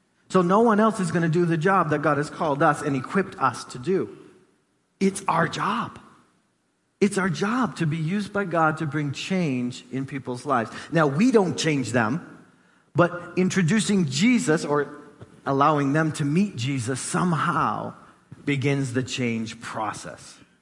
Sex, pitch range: male, 140-190 Hz